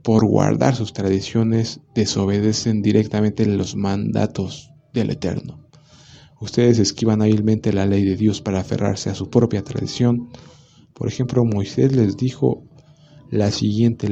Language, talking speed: Spanish, 130 wpm